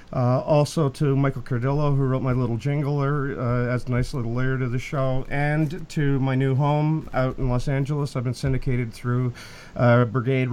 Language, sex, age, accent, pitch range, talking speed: English, male, 40-59, American, 120-140 Hz, 195 wpm